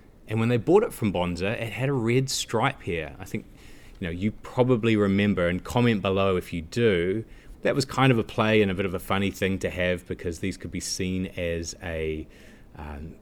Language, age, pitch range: English, 30-49, 90-115 Hz